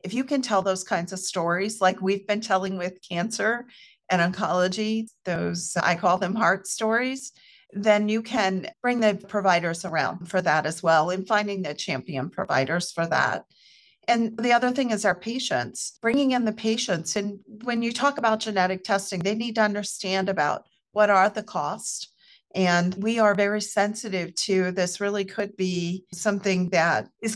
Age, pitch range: 40-59, 180-220 Hz